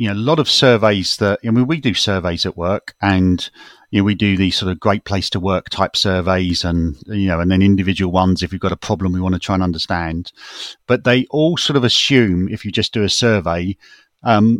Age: 40-59